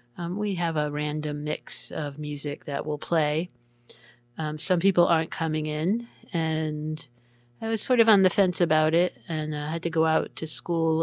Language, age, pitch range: English, 40-59, 135-160 Hz